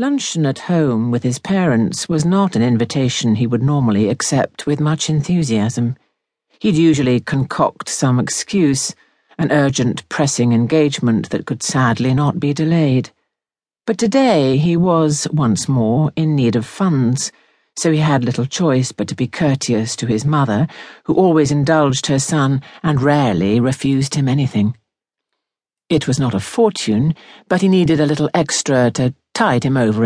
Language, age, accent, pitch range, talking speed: English, 50-69, British, 120-160 Hz, 160 wpm